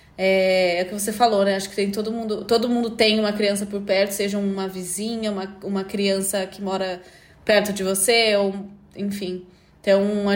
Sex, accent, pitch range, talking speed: female, Brazilian, 205-245 Hz, 175 wpm